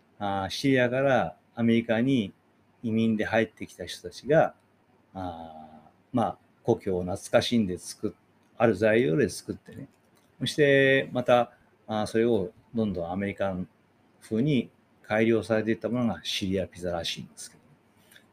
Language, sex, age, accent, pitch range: Japanese, male, 40-59, native, 95-130 Hz